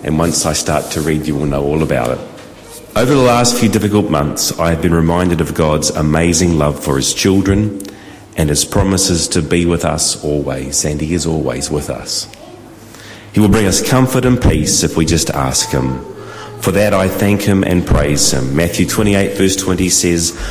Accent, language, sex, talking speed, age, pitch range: Australian, English, male, 200 wpm, 40-59, 80-105 Hz